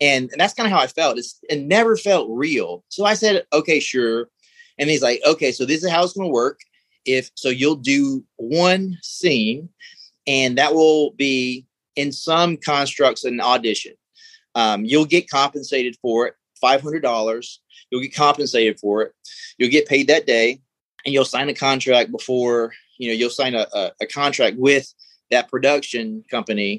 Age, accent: 30-49, American